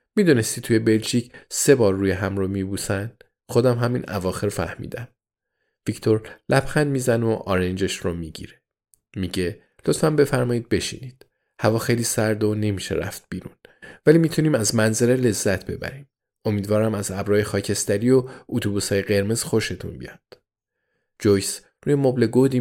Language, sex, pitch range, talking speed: Persian, male, 95-120 Hz, 130 wpm